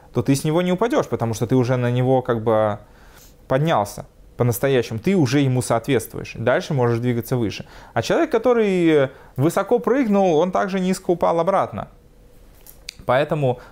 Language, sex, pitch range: Russian, male, 115-140 Hz